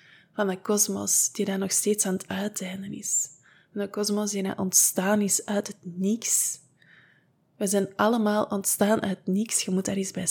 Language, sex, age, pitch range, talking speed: Dutch, female, 20-39, 185-225 Hz, 180 wpm